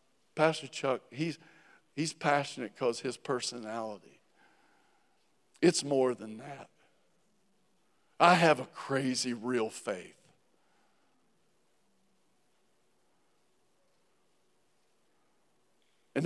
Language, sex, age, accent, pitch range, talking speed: English, male, 60-79, American, 145-185 Hz, 70 wpm